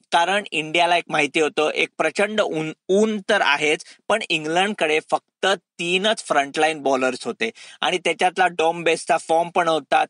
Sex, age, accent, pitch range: male, 50-69, native, 160-200 Hz